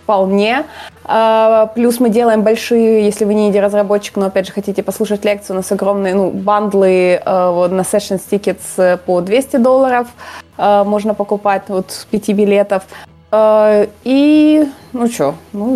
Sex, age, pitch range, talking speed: female, 20-39, 205-250 Hz, 150 wpm